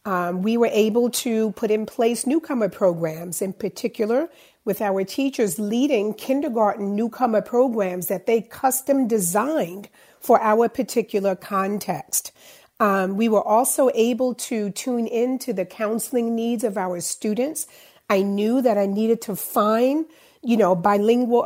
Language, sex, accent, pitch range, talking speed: English, female, American, 195-245 Hz, 145 wpm